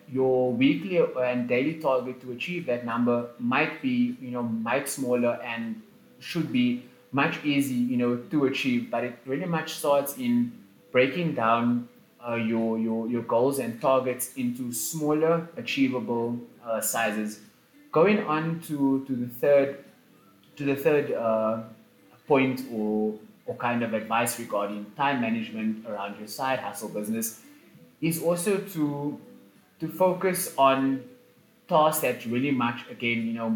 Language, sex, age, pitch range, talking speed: English, male, 20-39, 115-155 Hz, 145 wpm